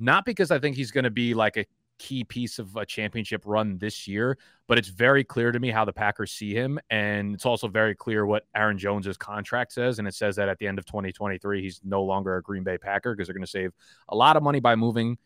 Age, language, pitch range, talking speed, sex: 20-39, English, 100-120 Hz, 260 wpm, male